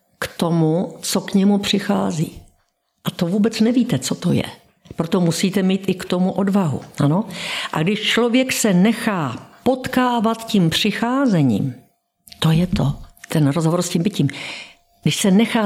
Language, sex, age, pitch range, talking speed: Slovak, female, 50-69, 170-220 Hz, 150 wpm